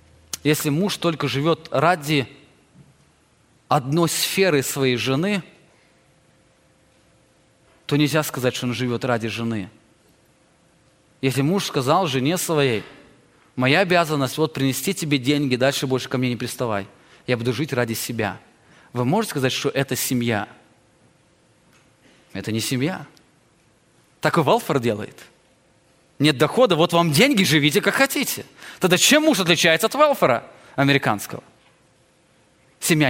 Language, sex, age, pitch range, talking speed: English, male, 20-39, 125-180 Hz, 125 wpm